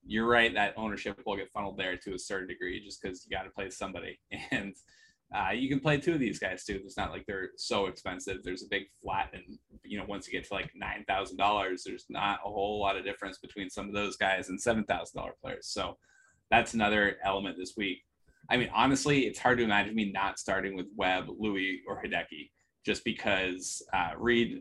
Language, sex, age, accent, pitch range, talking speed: English, male, 20-39, American, 95-110 Hz, 225 wpm